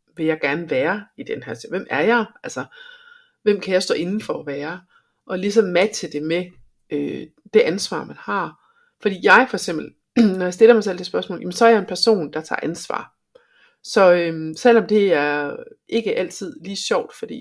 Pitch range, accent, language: 160-240 Hz, native, Danish